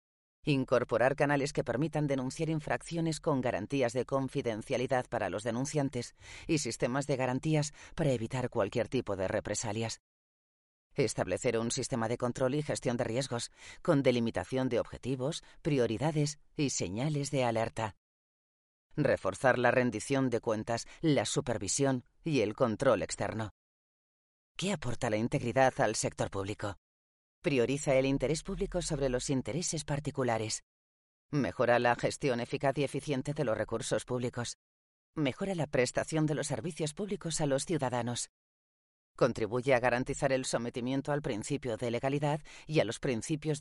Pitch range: 115-145 Hz